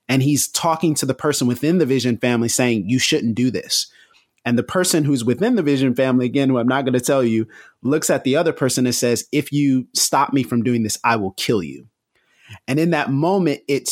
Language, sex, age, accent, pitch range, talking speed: English, male, 30-49, American, 125-150 Hz, 235 wpm